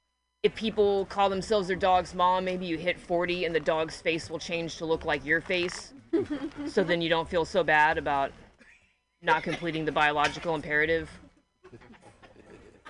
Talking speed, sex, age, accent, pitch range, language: 165 wpm, female, 20-39, American, 150-190 Hz, English